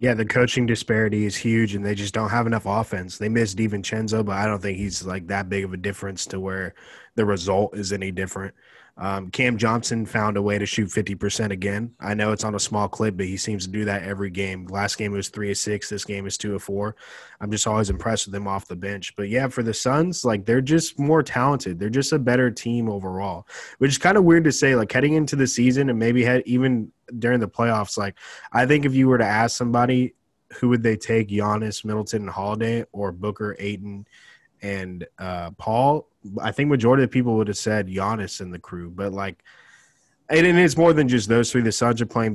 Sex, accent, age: male, American, 20-39